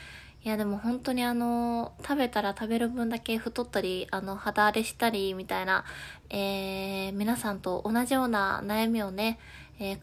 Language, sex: Japanese, female